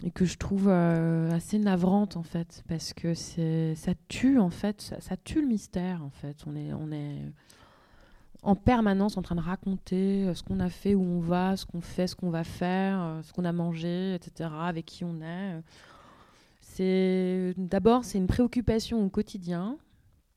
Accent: French